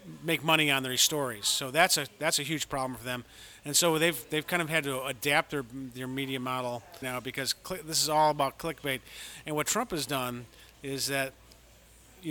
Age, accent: 40-59, American